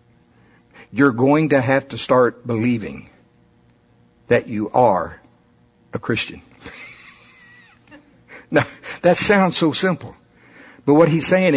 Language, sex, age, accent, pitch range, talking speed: English, male, 60-79, American, 110-145 Hz, 110 wpm